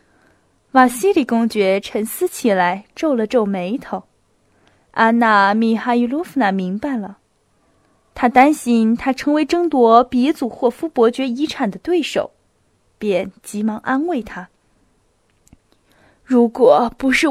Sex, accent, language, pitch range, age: female, native, Chinese, 205-265 Hz, 20-39